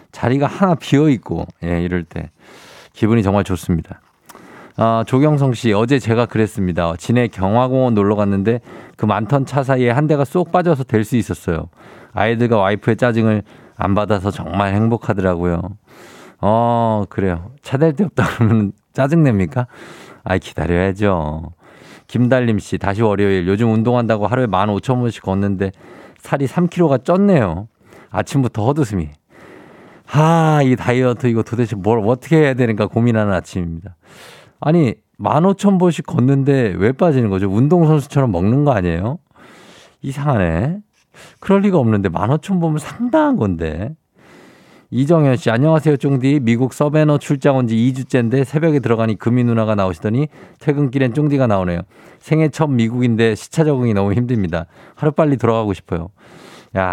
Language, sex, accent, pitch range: Korean, male, native, 100-140 Hz